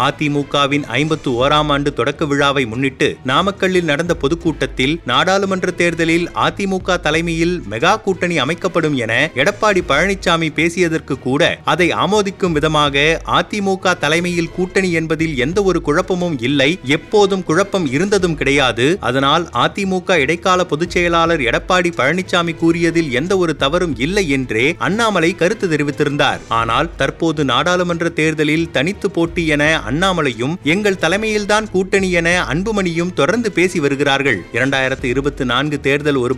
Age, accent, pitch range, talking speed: 30-49, native, 145-180 Hz, 115 wpm